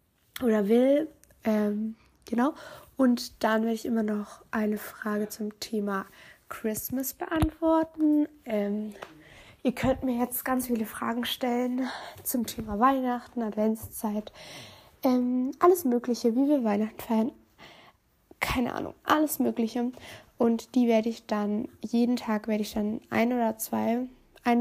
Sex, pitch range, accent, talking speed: female, 220-265 Hz, German, 130 wpm